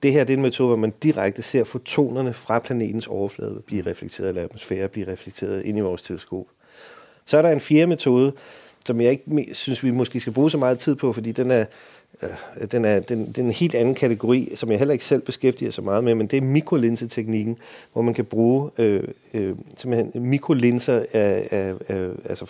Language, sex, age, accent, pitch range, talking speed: Danish, male, 40-59, native, 110-135 Hz, 215 wpm